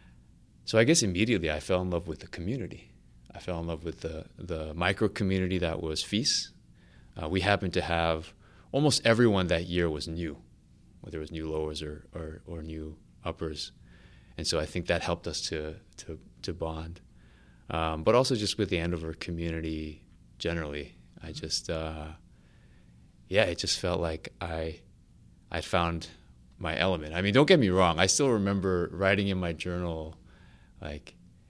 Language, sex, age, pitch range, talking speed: English, male, 30-49, 80-100 Hz, 170 wpm